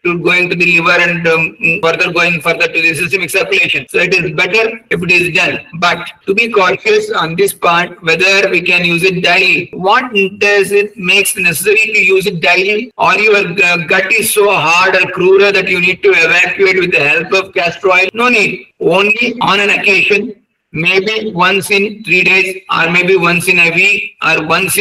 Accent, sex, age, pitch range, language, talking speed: Indian, male, 50-69, 175-200 Hz, English, 195 wpm